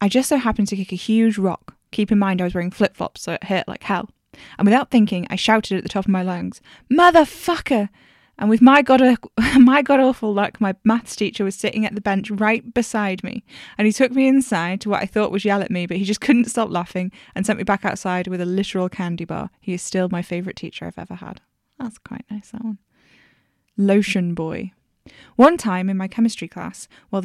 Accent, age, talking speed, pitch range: British, 10-29, 225 wpm, 190-225 Hz